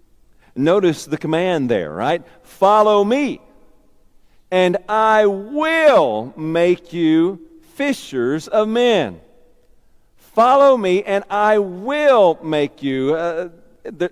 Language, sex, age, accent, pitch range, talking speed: English, male, 50-69, American, 165-225 Hz, 100 wpm